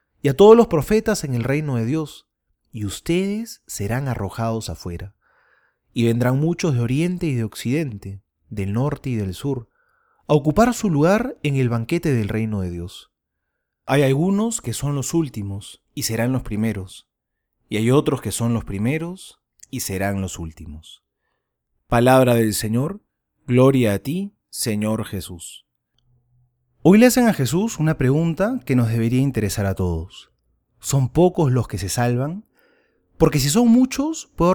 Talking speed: 160 wpm